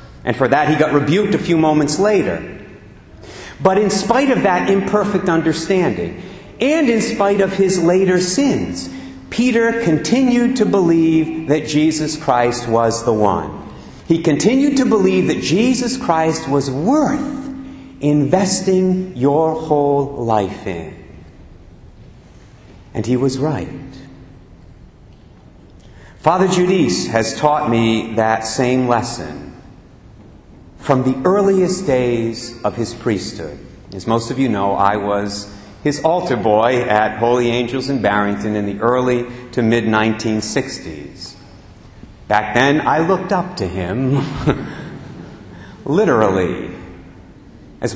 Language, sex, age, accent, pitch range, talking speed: English, male, 50-69, American, 105-175 Hz, 120 wpm